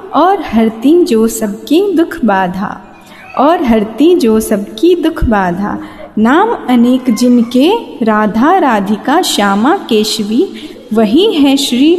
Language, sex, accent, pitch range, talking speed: Hindi, female, native, 225-330 Hz, 110 wpm